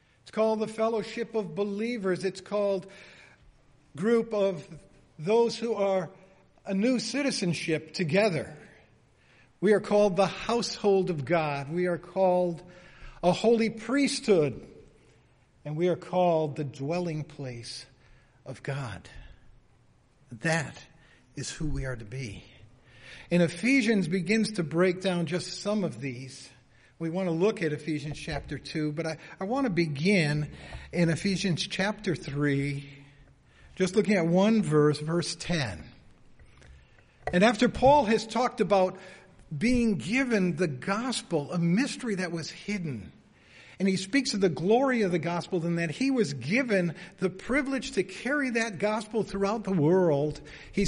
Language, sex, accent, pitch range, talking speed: English, male, American, 145-205 Hz, 140 wpm